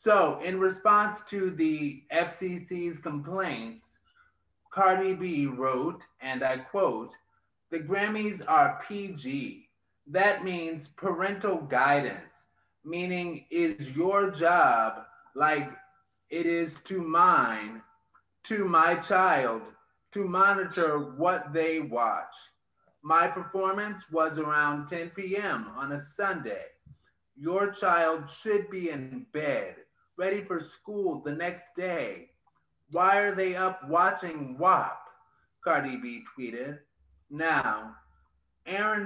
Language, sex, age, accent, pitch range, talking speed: English, male, 30-49, American, 145-190 Hz, 110 wpm